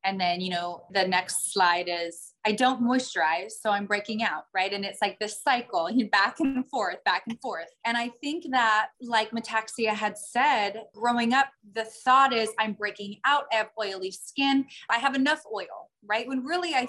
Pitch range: 205-255 Hz